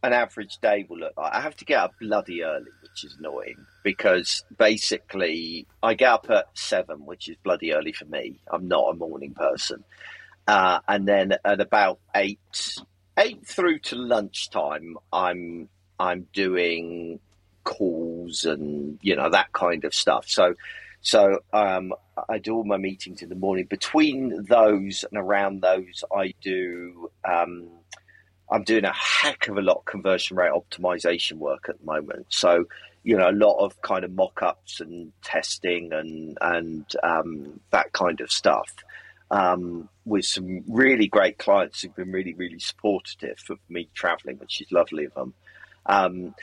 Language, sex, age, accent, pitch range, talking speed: English, male, 40-59, British, 85-100 Hz, 165 wpm